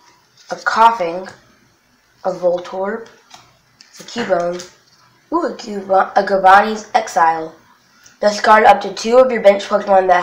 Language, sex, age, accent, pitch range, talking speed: English, female, 20-39, American, 180-205 Hz, 115 wpm